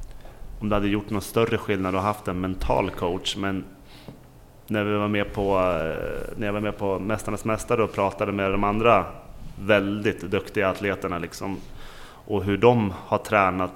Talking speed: 170 wpm